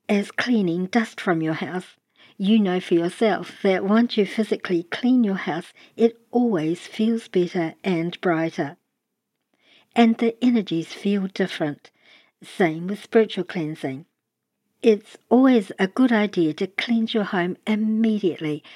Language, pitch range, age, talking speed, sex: English, 175-225 Hz, 60-79, 135 wpm, male